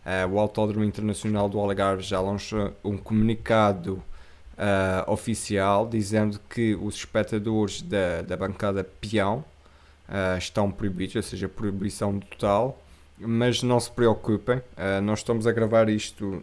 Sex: male